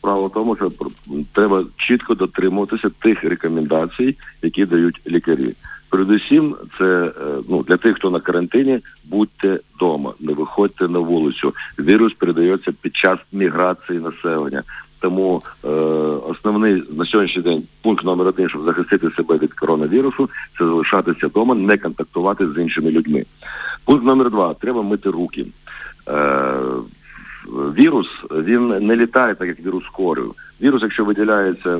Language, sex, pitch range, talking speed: Ukrainian, male, 90-115 Hz, 135 wpm